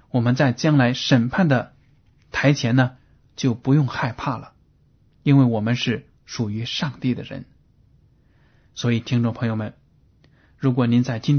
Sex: male